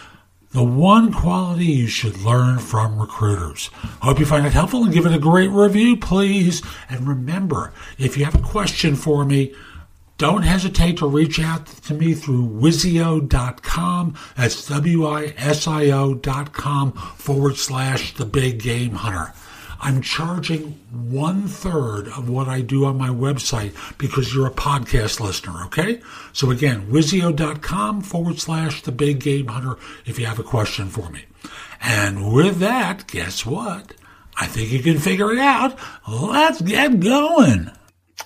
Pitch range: 110-160 Hz